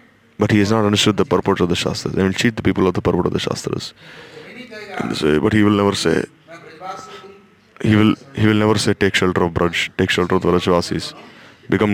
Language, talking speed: English, 215 wpm